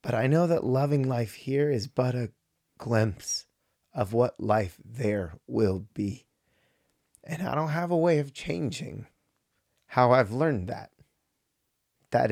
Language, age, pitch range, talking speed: English, 30-49, 110-145 Hz, 145 wpm